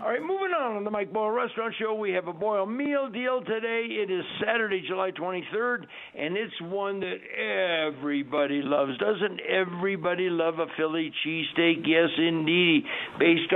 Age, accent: 60-79, American